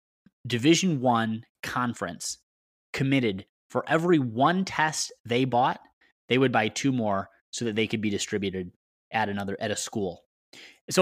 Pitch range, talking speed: 115-160 Hz, 145 wpm